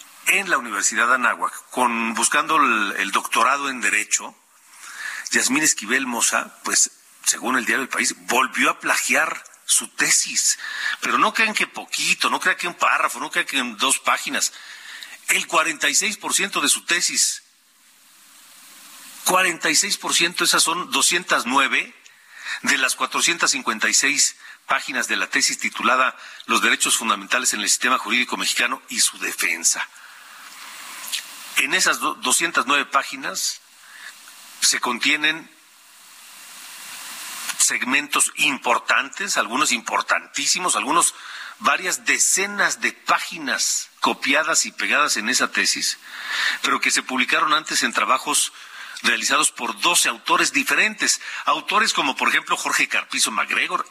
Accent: Mexican